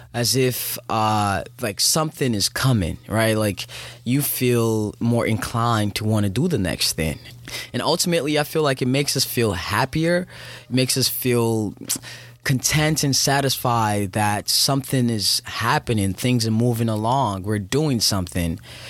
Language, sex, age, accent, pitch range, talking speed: English, male, 20-39, American, 115-150 Hz, 150 wpm